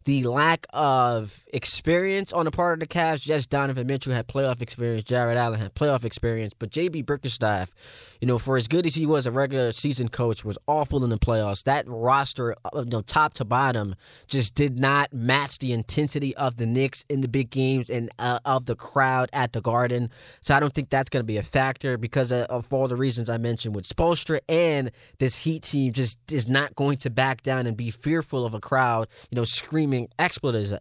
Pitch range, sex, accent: 120-145 Hz, male, American